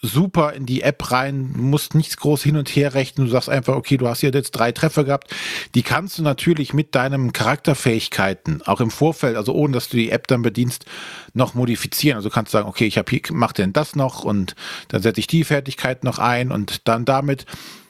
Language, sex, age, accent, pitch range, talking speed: German, male, 40-59, German, 120-150 Hz, 220 wpm